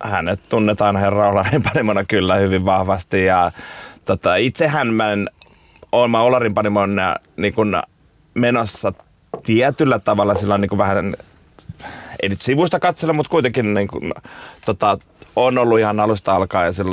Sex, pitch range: male, 95-110 Hz